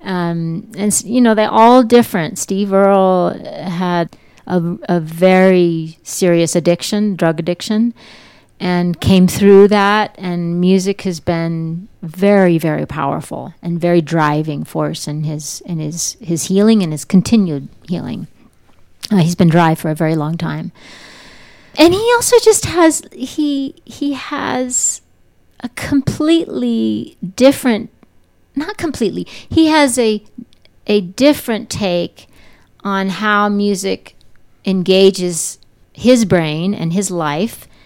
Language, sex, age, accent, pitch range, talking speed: English, female, 40-59, American, 170-225 Hz, 125 wpm